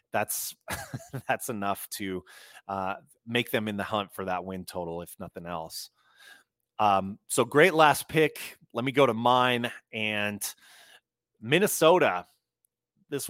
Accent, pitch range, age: American, 120-155 Hz, 30-49